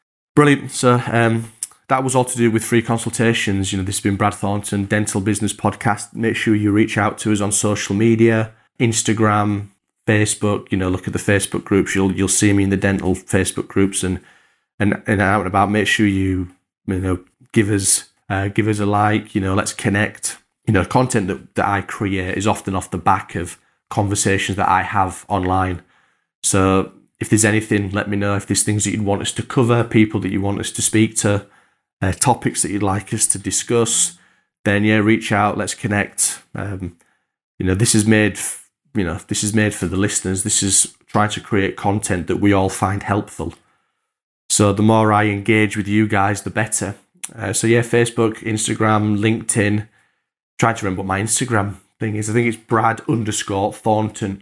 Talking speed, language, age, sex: 200 wpm, English, 30-49, male